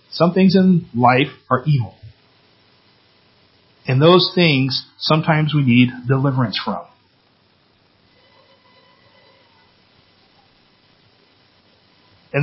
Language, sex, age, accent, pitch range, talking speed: English, male, 40-59, American, 120-155 Hz, 70 wpm